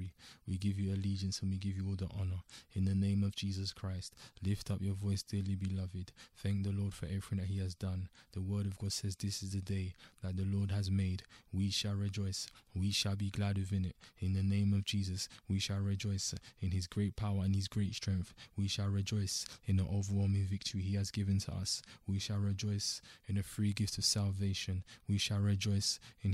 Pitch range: 95-100 Hz